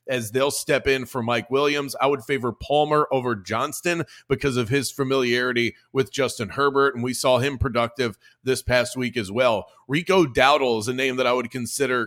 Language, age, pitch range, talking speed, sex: English, 30-49, 120-140 Hz, 195 wpm, male